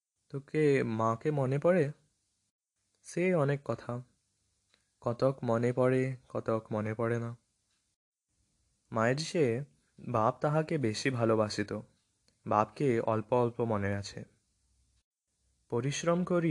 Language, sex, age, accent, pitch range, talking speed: English, male, 20-39, Indian, 110-130 Hz, 100 wpm